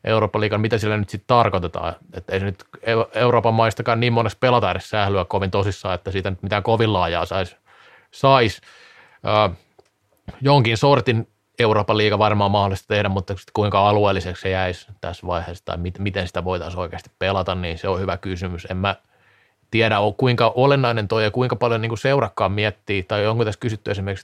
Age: 20-39